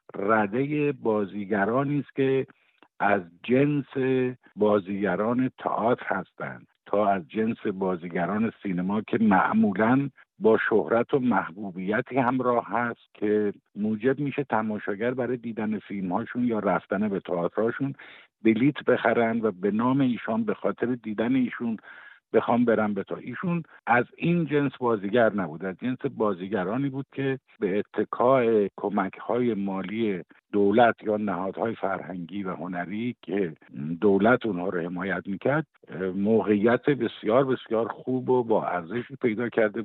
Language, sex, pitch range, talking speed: Persian, male, 100-125 Hz, 125 wpm